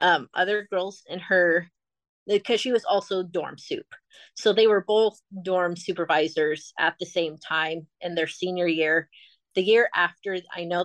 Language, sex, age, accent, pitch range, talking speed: English, female, 30-49, American, 165-205 Hz, 165 wpm